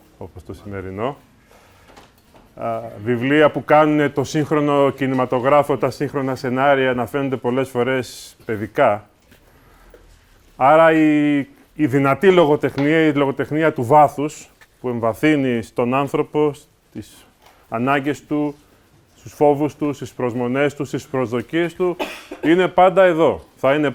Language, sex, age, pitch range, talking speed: English, male, 30-49, 120-160 Hz, 120 wpm